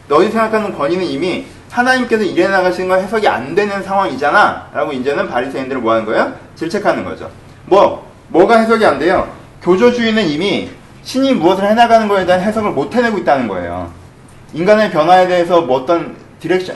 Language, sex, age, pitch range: Korean, male, 30-49, 160-220 Hz